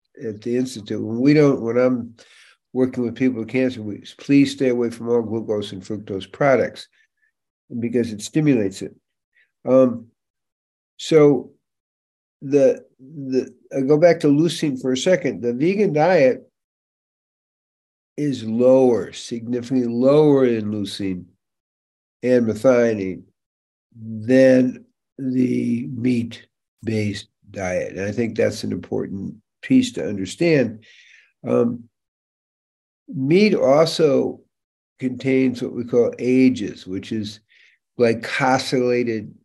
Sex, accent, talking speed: male, American, 115 wpm